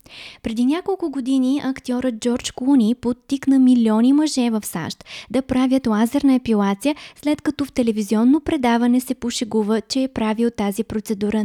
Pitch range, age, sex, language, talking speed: 220-275 Hz, 20-39, female, Bulgarian, 140 wpm